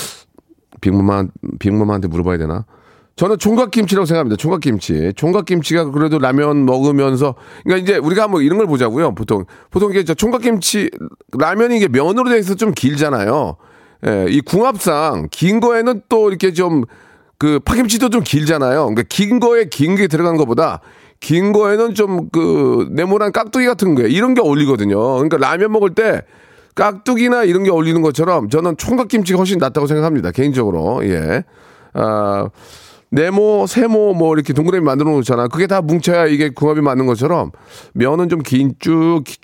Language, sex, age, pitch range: Korean, male, 40-59, 130-195 Hz